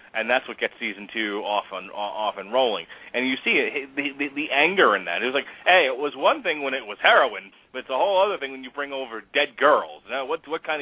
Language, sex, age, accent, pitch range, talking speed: English, male, 30-49, American, 120-160 Hz, 270 wpm